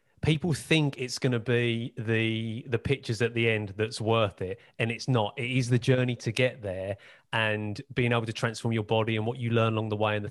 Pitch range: 110-130 Hz